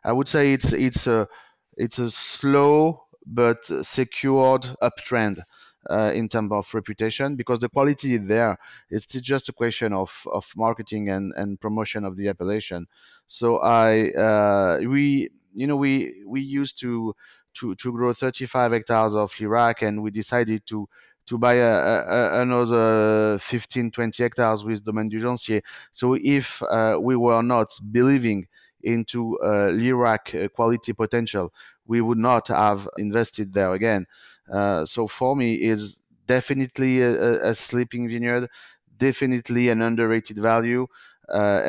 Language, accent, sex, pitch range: English, French, male, 105-125 Hz